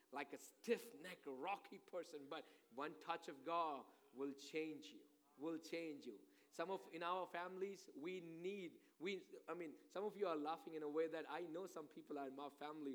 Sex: male